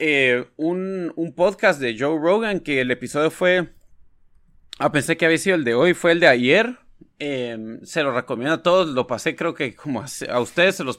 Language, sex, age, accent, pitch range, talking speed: Spanish, male, 30-49, Mexican, 125-175 Hz, 215 wpm